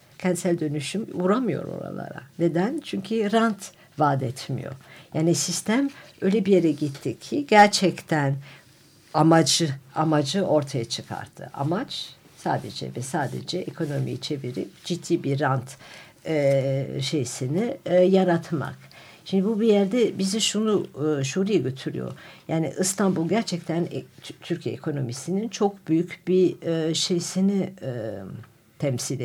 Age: 60-79